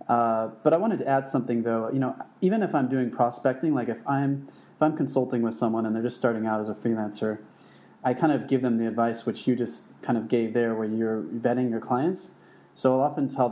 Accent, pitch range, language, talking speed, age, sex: American, 115-140 Hz, English, 260 wpm, 30-49, male